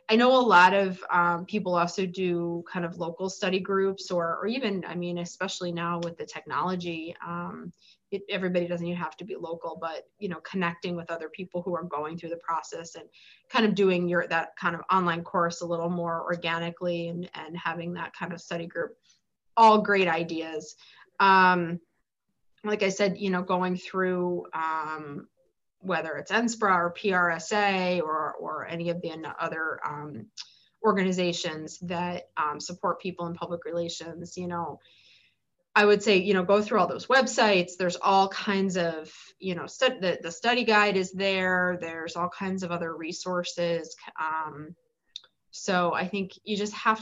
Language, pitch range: English, 165-190 Hz